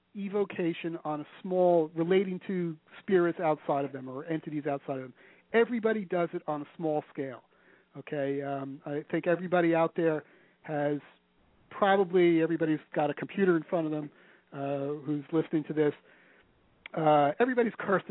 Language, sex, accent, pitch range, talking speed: English, male, American, 145-180 Hz, 155 wpm